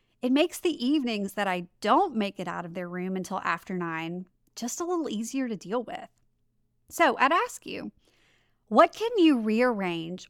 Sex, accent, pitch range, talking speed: female, American, 210-300 Hz, 180 wpm